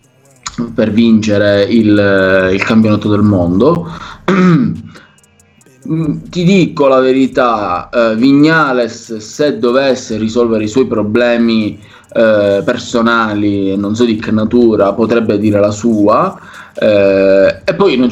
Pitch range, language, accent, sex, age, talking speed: 105-130 Hz, Italian, native, male, 20-39, 115 wpm